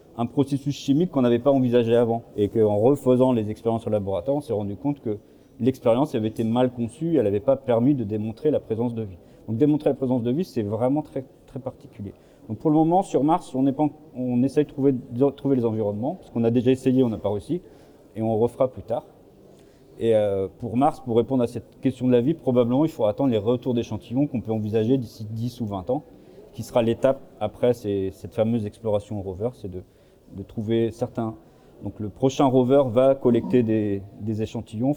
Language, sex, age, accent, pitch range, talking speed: French, male, 40-59, French, 110-135 Hz, 220 wpm